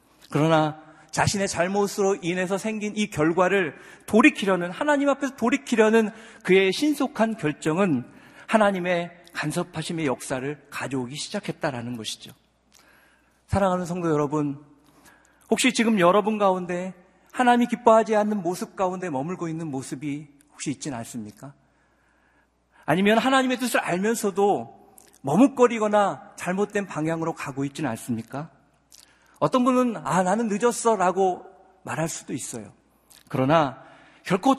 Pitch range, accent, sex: 150-225 Hz, native, male